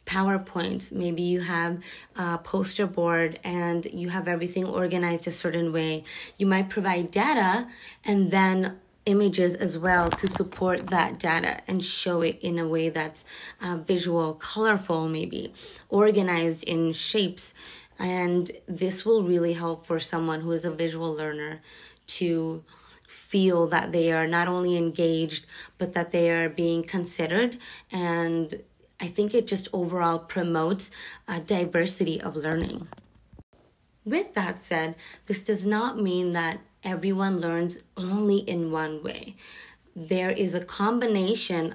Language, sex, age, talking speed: English, female, 20-39, 140 wpm